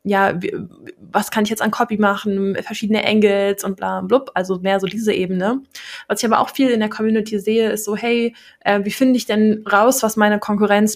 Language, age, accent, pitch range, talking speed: German, 20-39, German, 195-225 Hz, 220 wpm